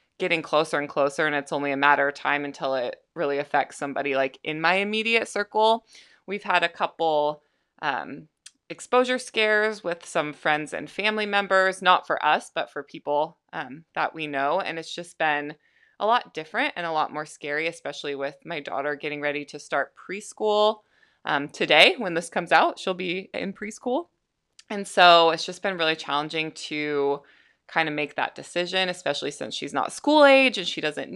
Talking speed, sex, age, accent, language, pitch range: 185 wpm, female, 20-39, American, English, 150-200 Hz